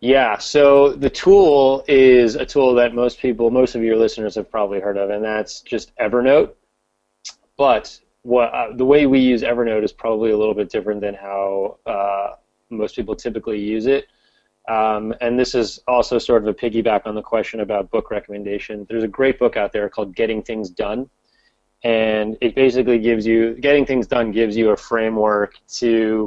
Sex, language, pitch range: male, English, 105-120 Hz